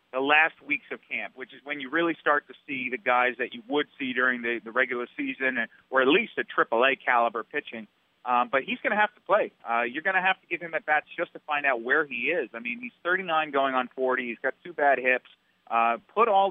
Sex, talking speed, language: male, 255 wpm, English